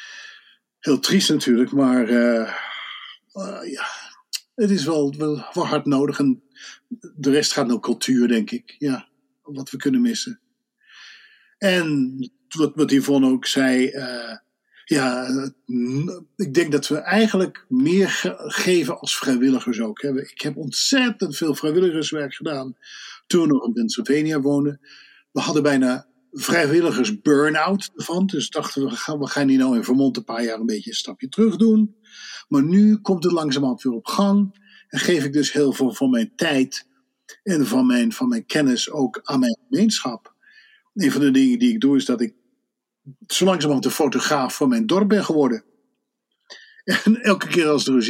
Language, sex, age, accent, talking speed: English, male, 50-69, Dutch, 165 wpm